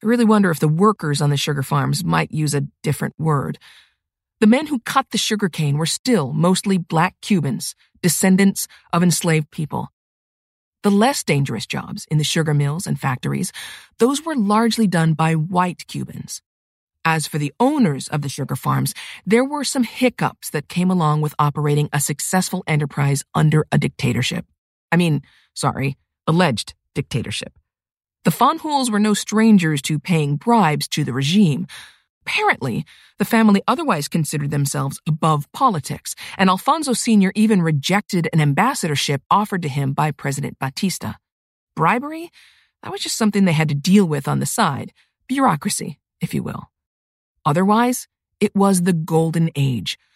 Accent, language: American, English